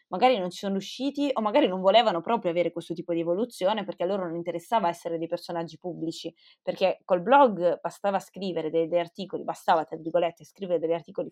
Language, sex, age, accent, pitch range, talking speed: Italian, female, 20-39, native, 170-215 Hz, 195 wpm